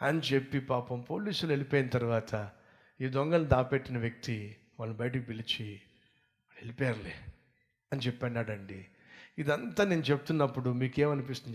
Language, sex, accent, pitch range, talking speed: Telugu, male, native, 125-175 Hz, 115 wpm